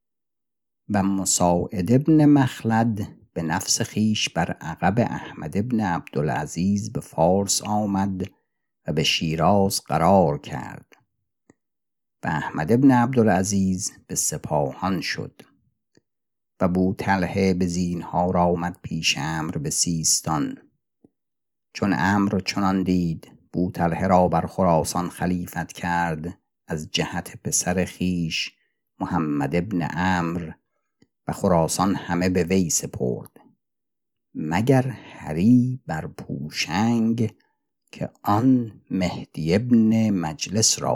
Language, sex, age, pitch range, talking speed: Persian, male, 50-69, 85-105 Hz, 105 wpm